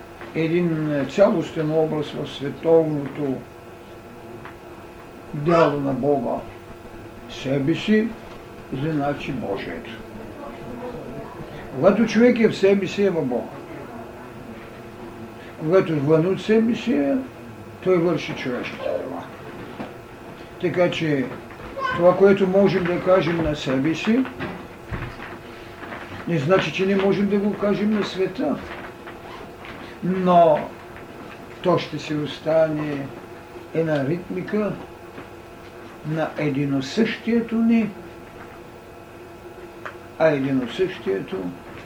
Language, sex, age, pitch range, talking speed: Bulgarian, male, 60-79, 120-185 Hz, 85 wpm